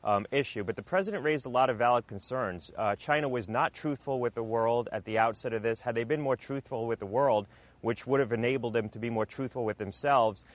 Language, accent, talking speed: English, American, 245 wpm